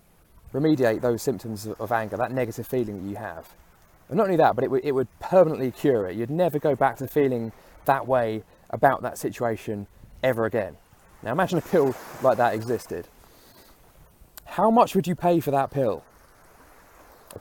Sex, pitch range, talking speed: male, 115-160 Hz, 175 wpm